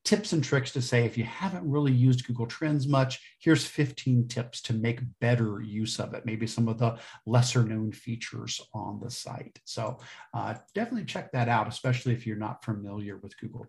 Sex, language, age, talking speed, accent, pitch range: male, English, 50-69, 195 wpm, American, 115-135 Hz